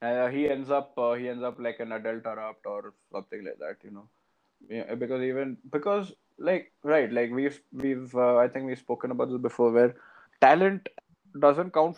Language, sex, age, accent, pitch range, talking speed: English, male, 20-39, Indian, 125-160 Hz, 195 wpm